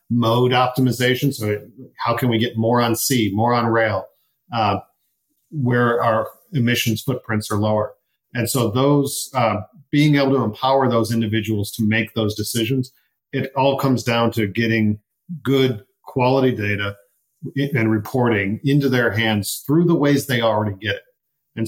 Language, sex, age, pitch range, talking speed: English, male, 40-59, 110-130 Hz, 155 wpm